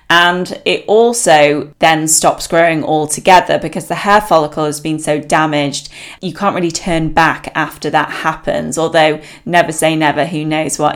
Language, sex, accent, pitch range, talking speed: English, female, British, 155-185 Hz, 165 wpm